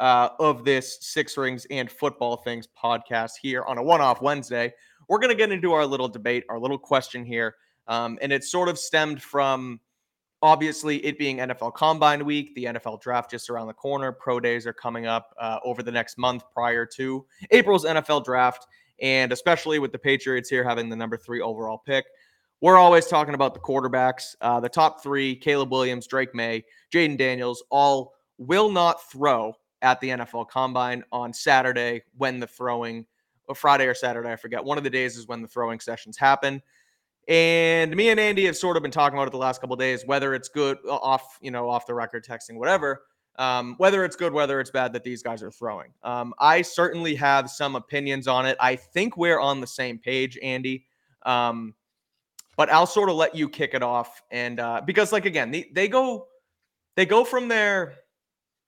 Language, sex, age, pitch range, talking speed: English, male, 20-39, 120-150 Hz, 200 wpm